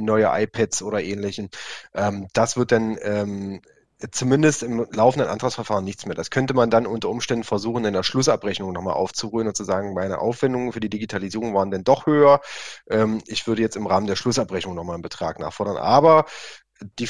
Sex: male